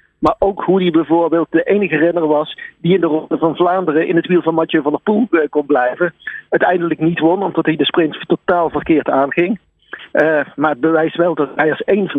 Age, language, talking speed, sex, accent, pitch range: 50-69, Dutch, 220 wpm, male, Dutch, 150-185 Hz